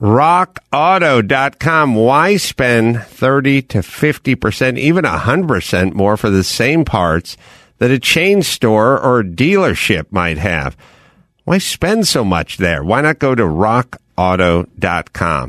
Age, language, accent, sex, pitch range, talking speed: 50-69, English, American, male, 95-135 Hz, 135 wpm